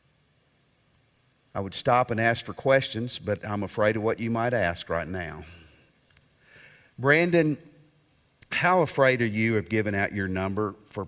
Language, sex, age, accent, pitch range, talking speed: English, male, 50-69, American, 100-145 Hz, 150 wpm